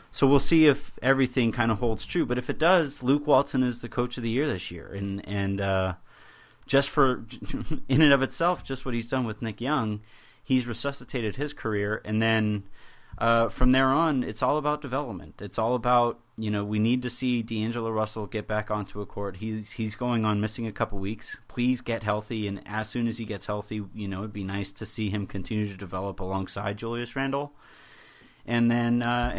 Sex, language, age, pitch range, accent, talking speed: male, English, 30-49, 100-120 Hz, American, 210 wpm